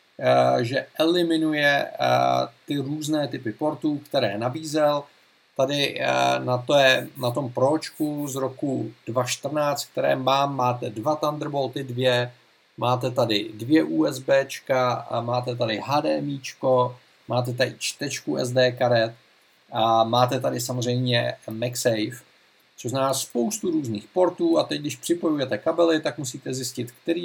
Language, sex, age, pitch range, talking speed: Czech, male, 50-69, 125-150 Hz, 120 wpm